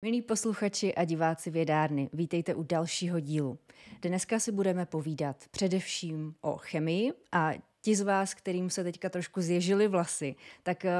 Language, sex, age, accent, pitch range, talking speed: Czech, female, 20-39, native, 165-200 Hz, 145 wpm